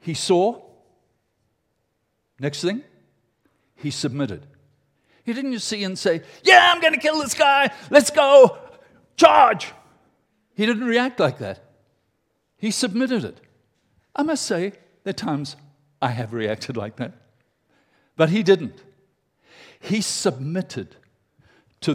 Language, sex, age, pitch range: English, male, 60-79, 125-185 Hz